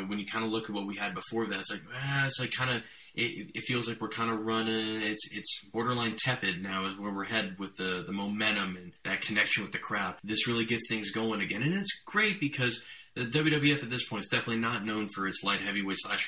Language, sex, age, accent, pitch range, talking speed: English, male, 20-39, American, 100-115 Hz, 255 wpm